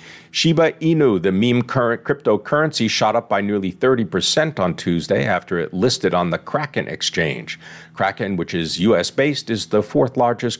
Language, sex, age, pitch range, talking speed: English, male, 50-69, 95-135 Hz, 155 wpm